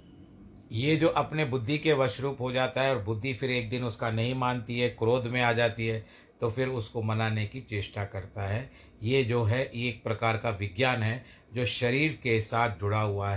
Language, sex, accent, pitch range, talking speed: Hindi, male, native, 110-125 Hz, 200 wpm